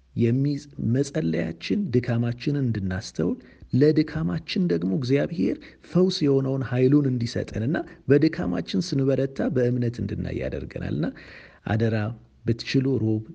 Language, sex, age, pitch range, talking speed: Amharic, male, 50-69, 95-130 Hz, 80 wpm